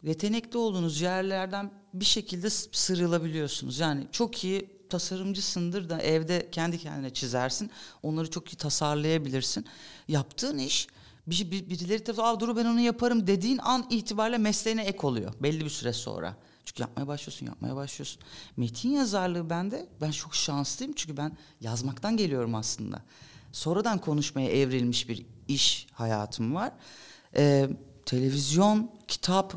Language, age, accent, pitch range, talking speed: Turkish, 40-59, native, 135-195 Hz, 130 wpm